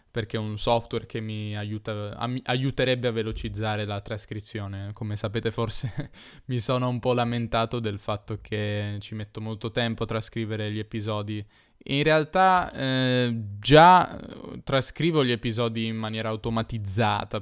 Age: 10-29